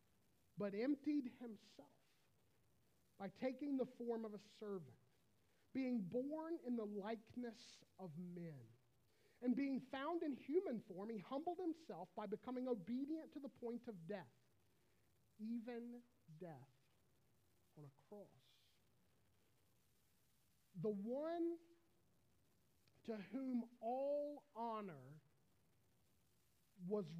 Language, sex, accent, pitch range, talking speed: English, male, American, 155-260 Hz, 100 wpm